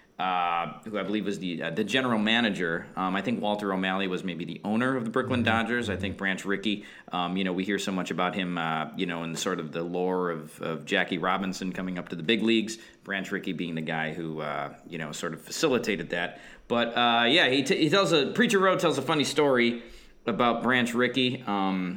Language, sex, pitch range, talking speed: English, male, 95-130 Hz, 230 wpm